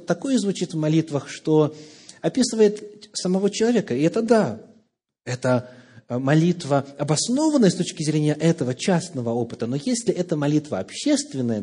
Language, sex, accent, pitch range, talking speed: Russian, male, native, 125-185 Hz, 130 wpm